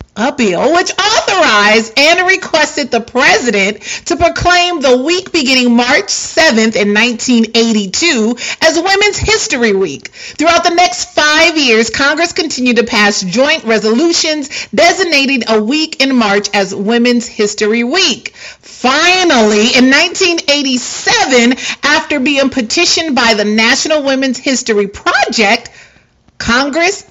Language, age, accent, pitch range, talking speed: English, 40-59, American, 230-330 Hz, 120 wpm